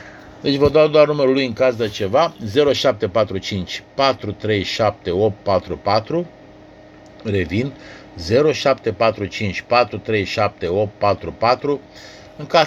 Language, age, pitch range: Romanian, 50-69, 105-140 Hz